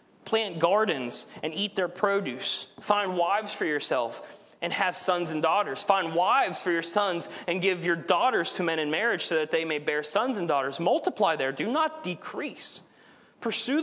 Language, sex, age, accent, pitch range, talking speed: English, male, 30-49, American, 185-255 Hz, 180 wpm